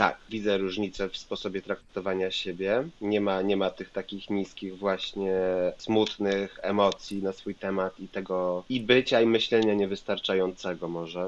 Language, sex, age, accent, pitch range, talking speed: Polish, male, 30-49, native, 90-105 Hz, 145 wpm